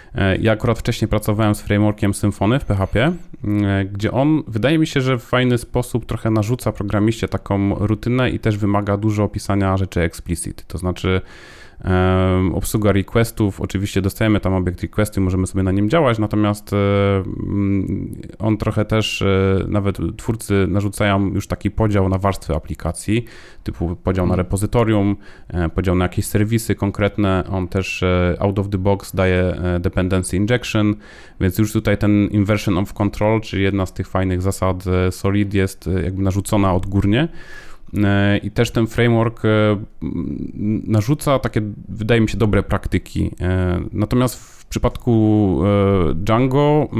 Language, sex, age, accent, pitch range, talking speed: Polish, male, 30-49, native, 95-110 Hz, 140 wpm